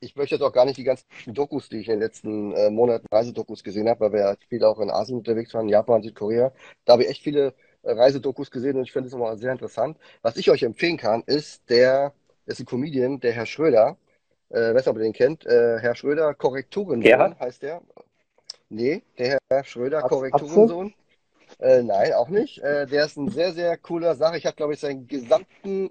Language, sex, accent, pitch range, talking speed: German, male, German, 120-170 Hz, 215 wpm